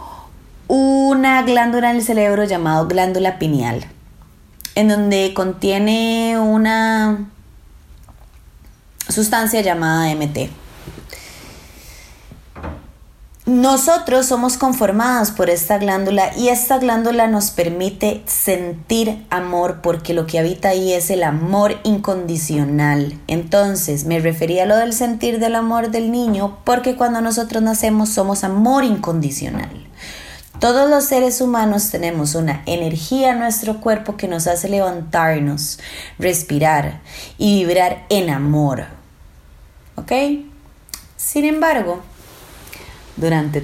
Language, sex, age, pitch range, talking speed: English, female, 20-39, 160-225 Hz, 105 wpm